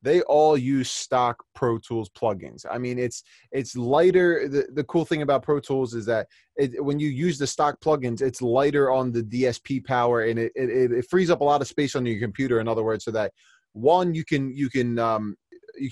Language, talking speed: English, 225 wpm